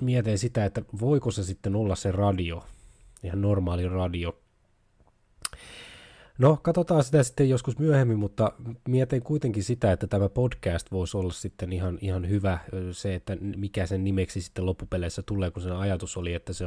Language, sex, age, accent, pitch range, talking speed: Finnish, male, 20-39, native, 90-110 Hz, 160 wpm